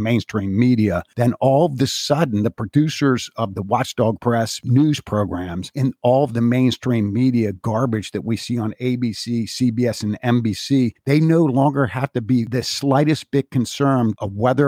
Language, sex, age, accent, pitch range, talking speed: English, male, 50-69, American, 110-130 Hz, 170 wpm